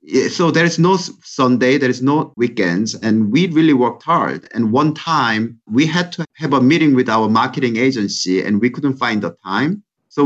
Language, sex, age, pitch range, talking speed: English, male, 50-69, 105-155 Hz, 200 wpm